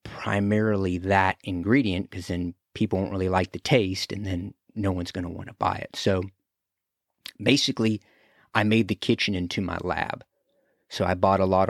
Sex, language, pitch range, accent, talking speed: male, English, 95-105 Hz, American, 185 wpm